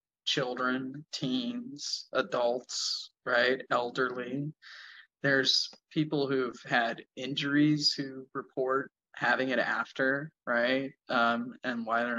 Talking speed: 100 wpm